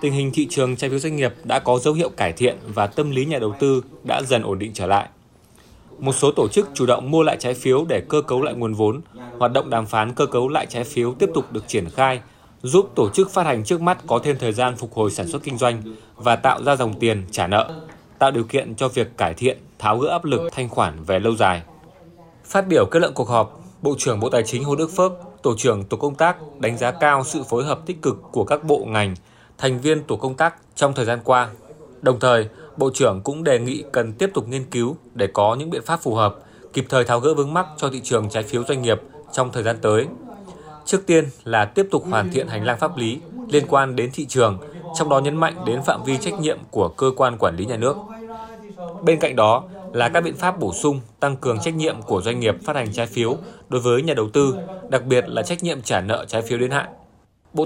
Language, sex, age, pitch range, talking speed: Vietnamese, male, 20-39, 120-155 Hz, 250 wpm